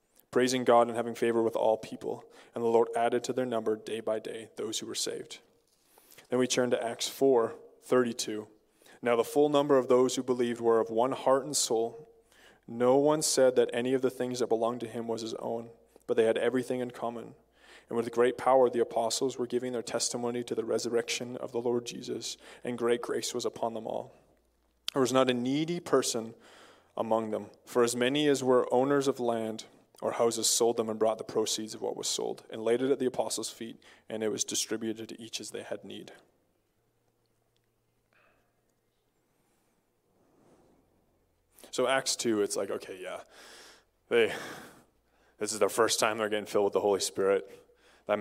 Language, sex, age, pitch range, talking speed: English, male, 20-39, 115-130 Hz, 190 wpm